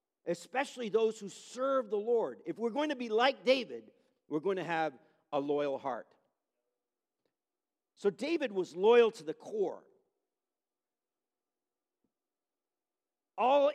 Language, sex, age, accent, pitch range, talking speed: English, male, 50-69, American, 190-265 Hz, 120 wpm